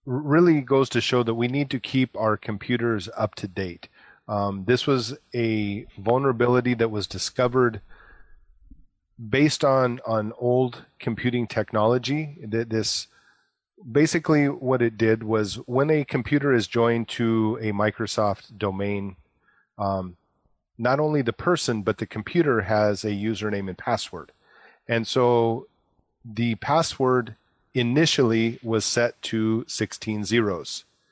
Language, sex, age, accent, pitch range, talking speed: English, male, 30-49, American, 110-125 Hz, 125 wpm